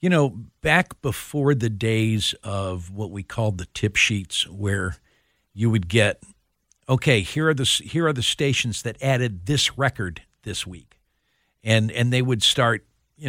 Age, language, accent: 50-69, English, American